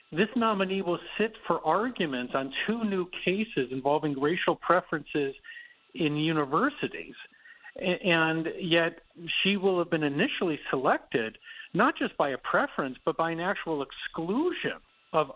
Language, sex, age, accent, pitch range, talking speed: English, male, 50-69, American, 145-205 Hz, 135 wpm